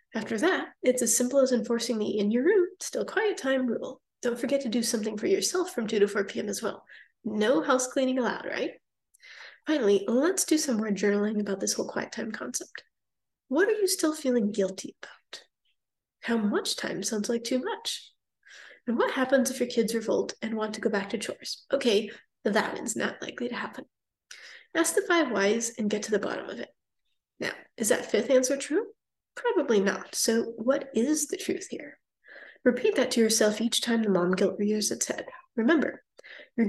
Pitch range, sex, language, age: 220-295 Hz, female, English, 20-39